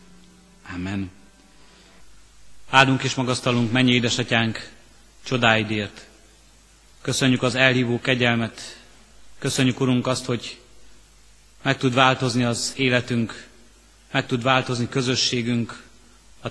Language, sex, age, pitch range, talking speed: Hungarian, male, 30-49, 115-130 Hz, 90 wpm